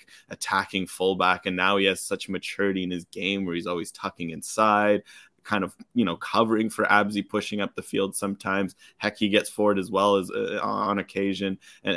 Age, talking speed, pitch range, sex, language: 20-39, 195 wpm, 90-105 Hz, male, English